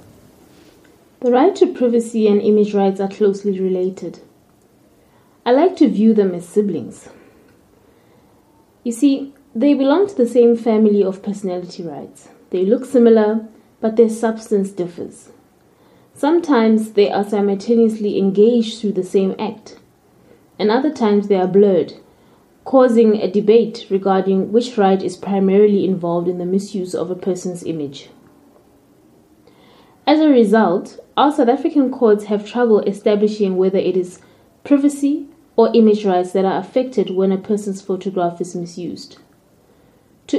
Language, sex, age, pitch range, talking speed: English, female, 20-39, 190-230 Hz, 140 wpm